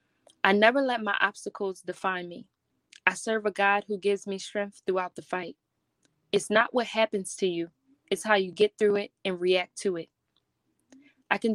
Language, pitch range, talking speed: English, 185-220 Hz, 185 wpm